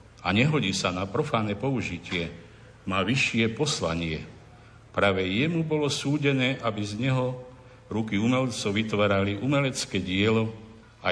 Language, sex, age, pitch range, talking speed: Slovak, male, 50-69, 105-125 Hz, 120 wpm